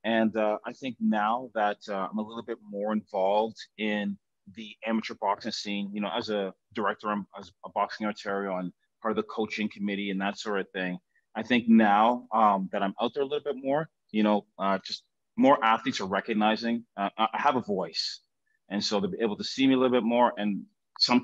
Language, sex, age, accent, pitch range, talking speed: English, male, 30-49, American, 100-120 Hz, 220 wpm